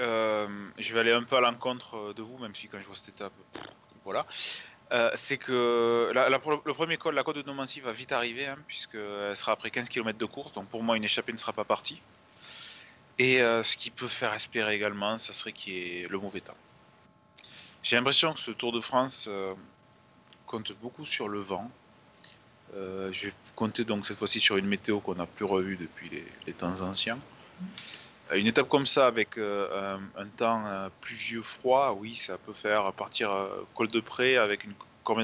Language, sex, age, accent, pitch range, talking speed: French, male, 20-39, French, 100-120 Hz, 205 wpm